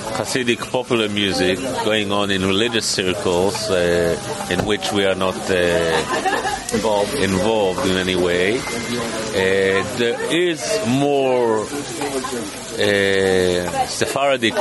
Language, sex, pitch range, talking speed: English, male, 95-125 Hz, 105 wpm